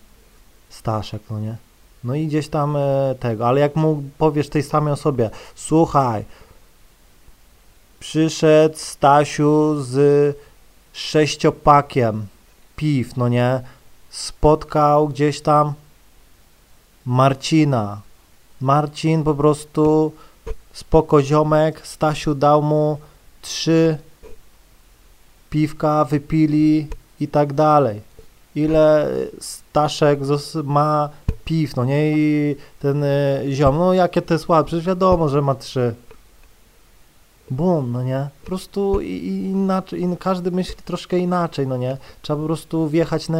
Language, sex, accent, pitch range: Polish, male, native, 130-160 Hz